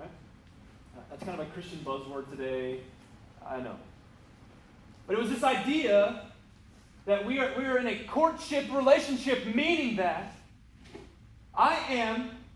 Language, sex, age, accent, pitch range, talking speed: English, male, 30-49, American, 195-250 Hz, 130 wpm